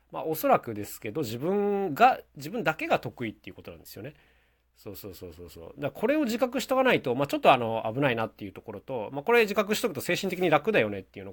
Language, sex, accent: Japanese, male, native